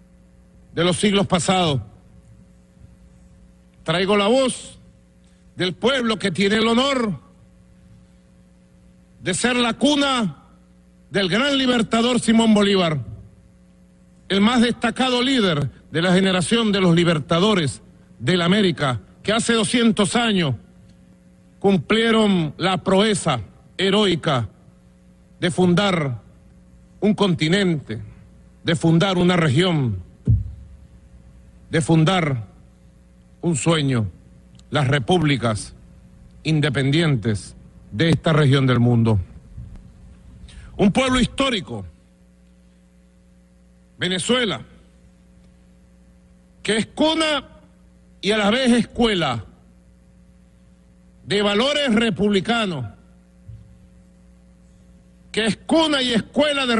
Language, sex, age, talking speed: Spanish, male, 50-69, 90 wpm